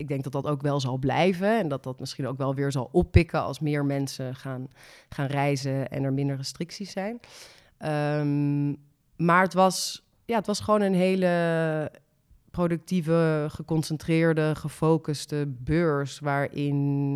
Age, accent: 30-49, Dutch